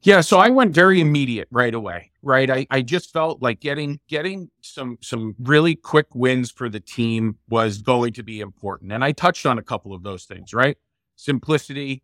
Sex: male